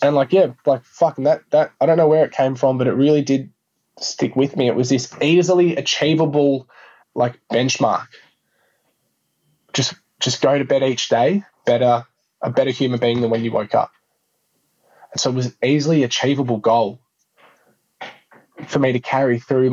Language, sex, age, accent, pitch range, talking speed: English, male, 20-39, Australian, 120-145 Hz, 175 wpm